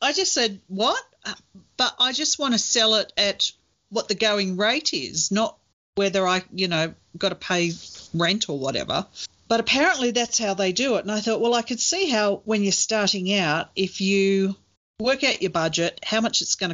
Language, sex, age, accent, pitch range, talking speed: English, female, 40-59, Australian, 160-205 Hz, 205 wpm